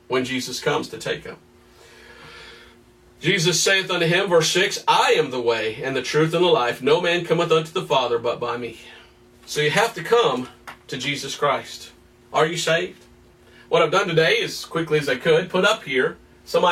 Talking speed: 195 wpm